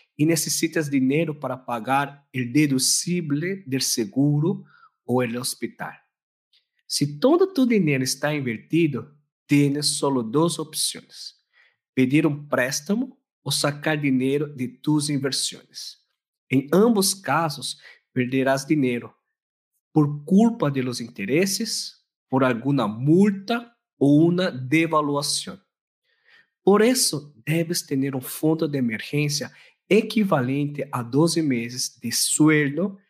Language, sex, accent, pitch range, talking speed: Spanish, male, Brazilian, 130-170 Hz, 110 wpm